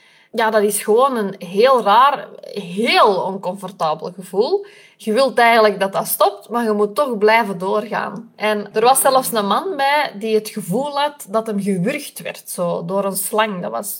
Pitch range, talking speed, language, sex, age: 205-260 Hz, 185 wpm, Dutch, female, 20-39